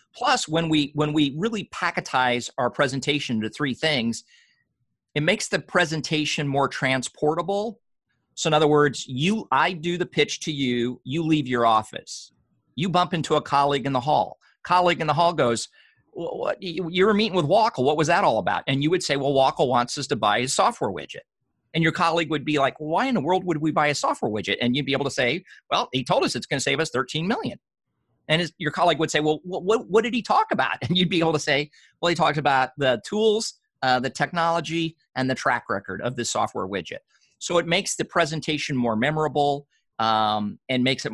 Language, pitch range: English, 130-170 Hz